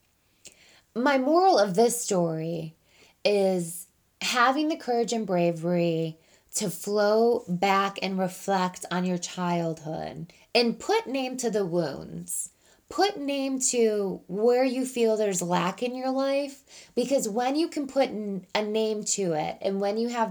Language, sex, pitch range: English, female, 180-245 Hz